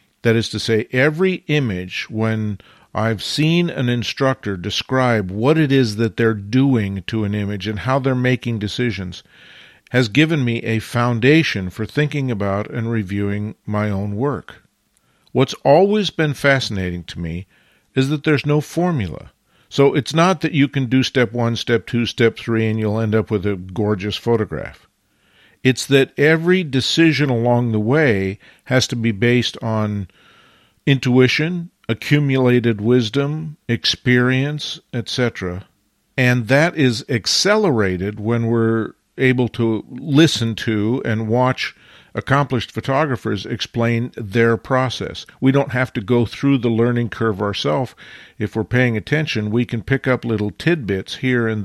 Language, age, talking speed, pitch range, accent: English, 50-69, 150 wpm, 110-135 Hz, American